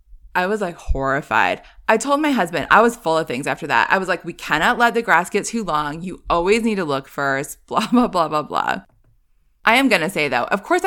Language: English